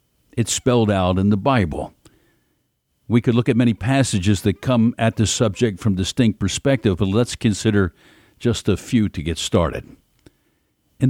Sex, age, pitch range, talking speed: male, 60-79, 100-130 Hz, 160 wpm